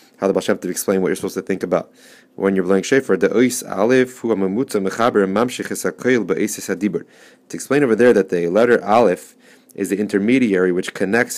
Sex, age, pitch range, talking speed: male, 30-49, 95-115 Hz, 130 wpm